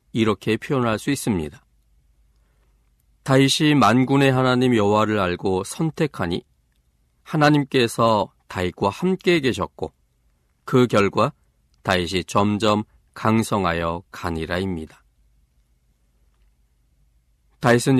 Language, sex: Korean, male